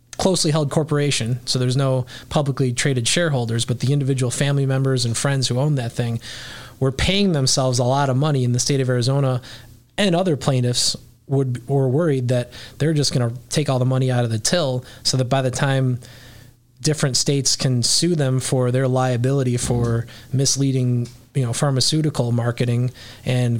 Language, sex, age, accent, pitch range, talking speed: English, male, 20-39, American, 120-140 Hz, 180 wpm